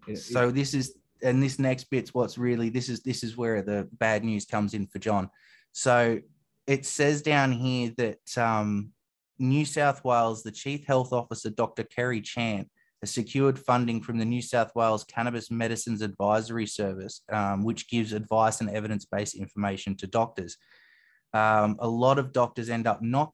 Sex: male